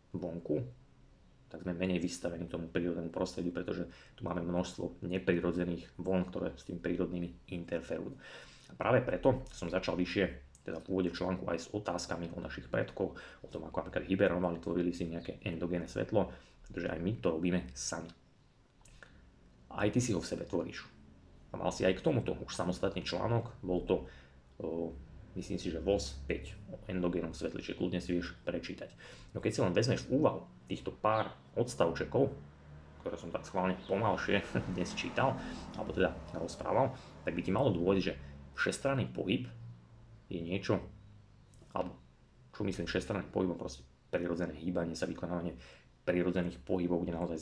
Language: Slovak